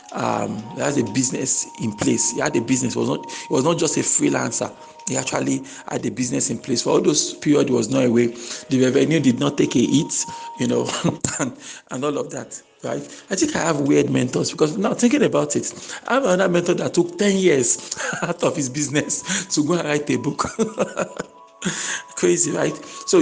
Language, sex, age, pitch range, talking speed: English, male, 50-69, 130-175 Hz, 210 wpm